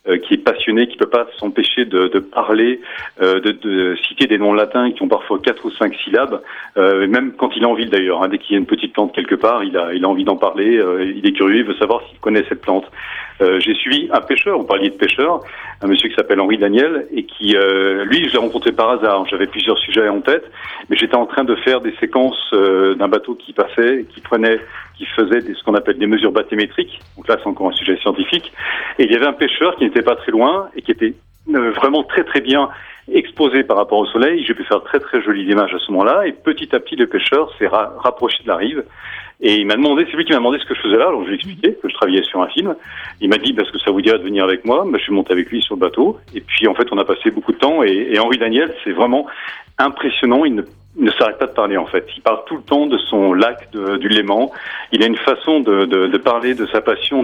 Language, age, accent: English, 40-59, French